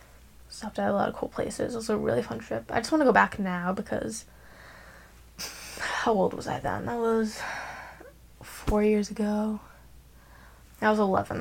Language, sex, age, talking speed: English, female, 10-29, 180 wpm